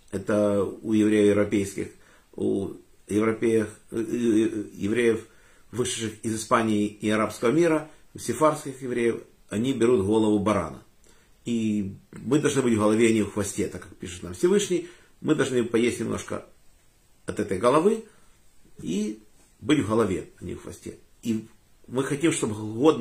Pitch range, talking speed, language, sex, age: 100-120 Hz, 140 wpm, Russian, male, 50-69